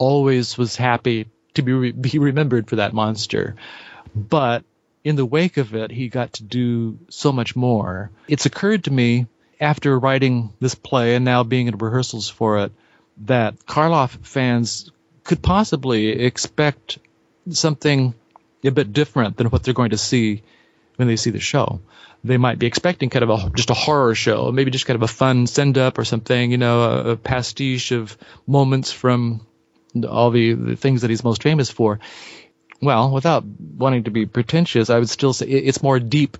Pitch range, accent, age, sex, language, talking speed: 115-135 Hz, American, 40-59, male, English, 180 wpm